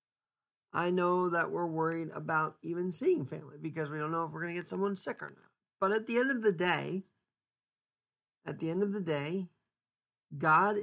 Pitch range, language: 145-195 Hz, English